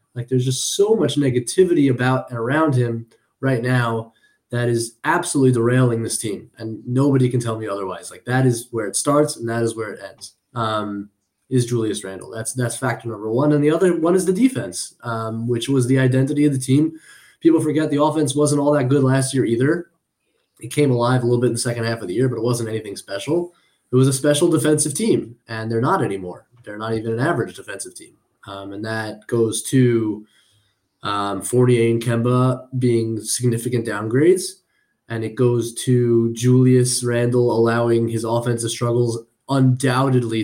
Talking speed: 190 wpm